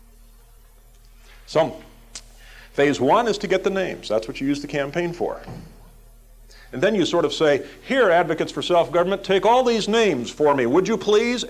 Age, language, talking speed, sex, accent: 50-69, English, 175 wpm, male, American